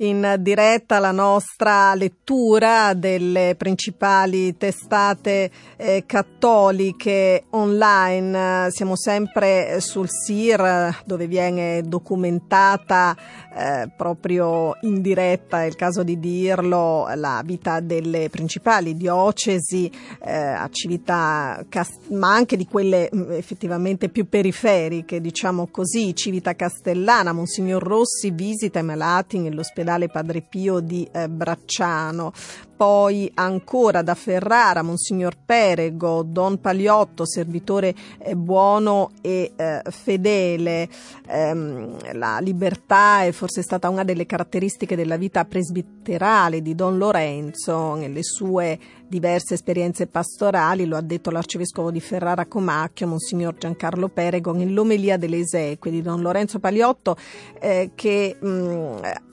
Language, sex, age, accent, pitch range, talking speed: Italian, female, 40-59, native, 170-200 Hz, 110 wpm